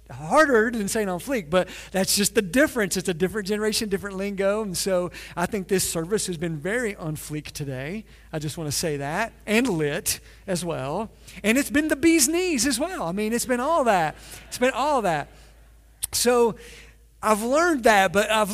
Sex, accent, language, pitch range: male, American, English, 160-200 Hz